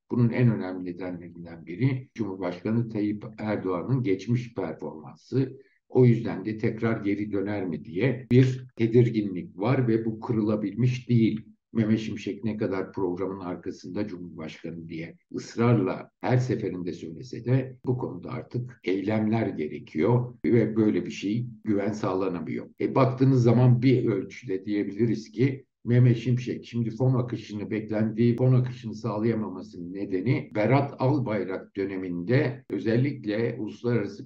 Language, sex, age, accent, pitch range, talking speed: Turkish, male, 60-79, native, 100-125 Hz, 125 wpm